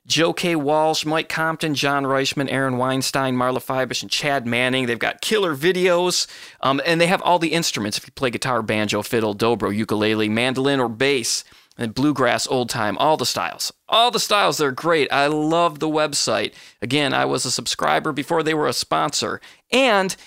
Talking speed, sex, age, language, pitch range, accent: 185 wpm, male, 30-49, English, 125-170 Hz, American